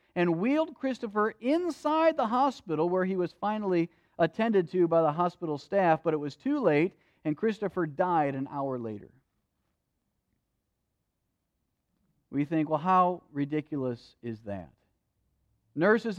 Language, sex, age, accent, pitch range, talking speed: English, male, 40-59, American, 120-170 Hz, 130 wpm